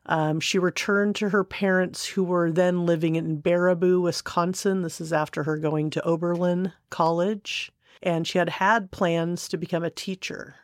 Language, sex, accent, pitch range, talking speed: English, female, American, 160-195 Hz, 170 wpm